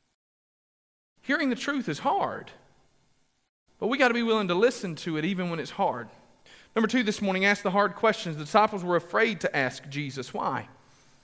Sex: male